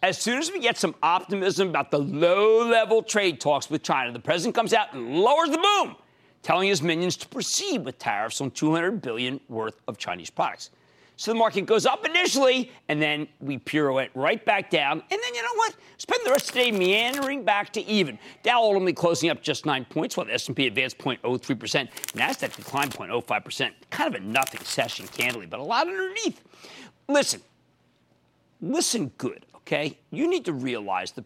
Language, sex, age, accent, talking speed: English, male, 50-69, American, 190 wpm